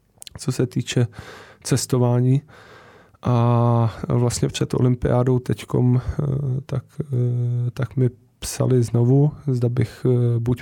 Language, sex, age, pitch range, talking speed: Czech, male, 20-39, 115-125 Hz, 95 wpm